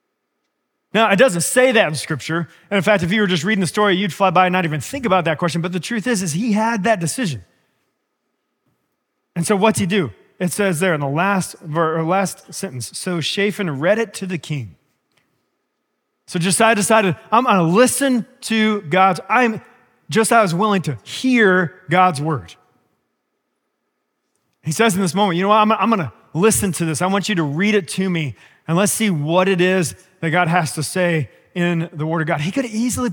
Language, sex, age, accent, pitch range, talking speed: English, male, 30-49, American, 165-215 Hz, 210 wpm